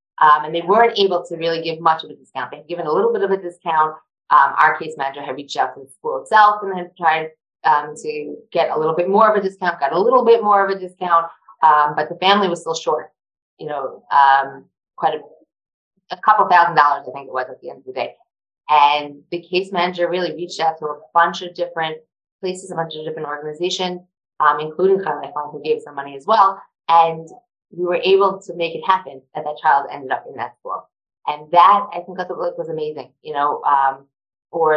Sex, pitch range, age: female, 155-185 Hz, 20-39